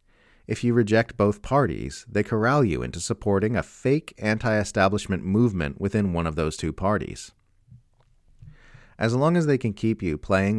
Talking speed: 160 wpm